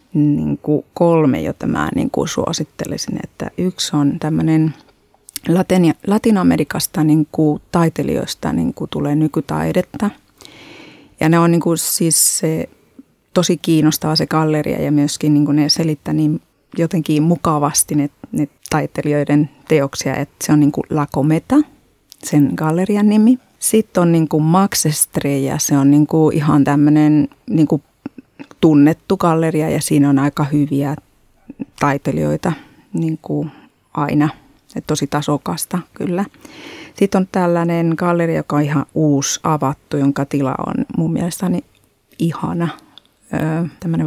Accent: native